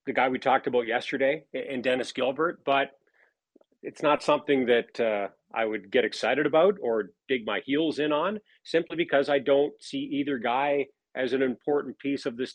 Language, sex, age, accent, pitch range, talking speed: English, male, 40-59, American, 125-150 Hz, 185 wpm